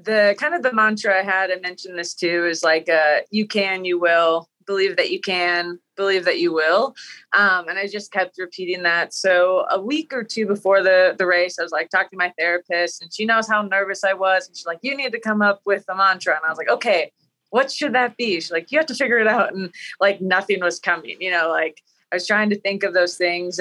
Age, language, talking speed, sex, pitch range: 20-39, English, 255 wpm, female, 170-205 Hz